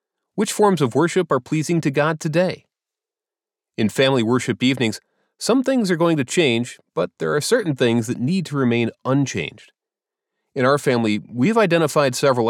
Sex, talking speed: male, 170 wpm